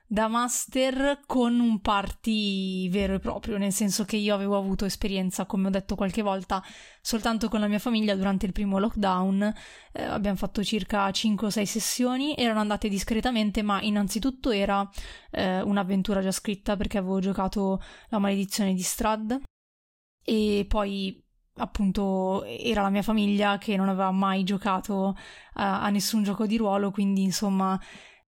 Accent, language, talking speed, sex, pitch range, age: native, Italian, 155 wpm, female, 195-220 Hz, 20-39